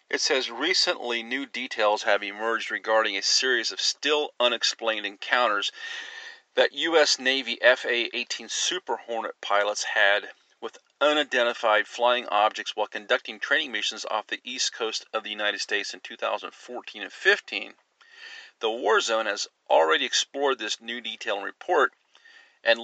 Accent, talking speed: American, 140 wpm